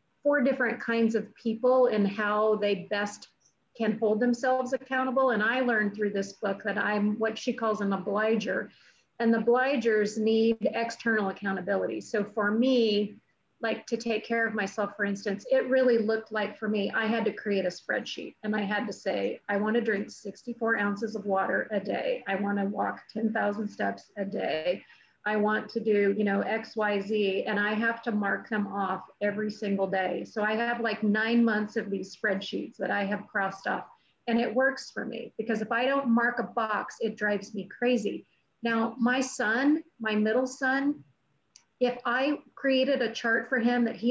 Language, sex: English, female